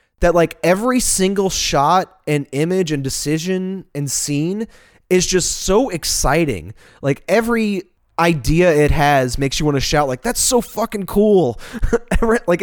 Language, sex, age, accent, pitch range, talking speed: English, male, 20-39, American, 135-175 Hz, 145 wpm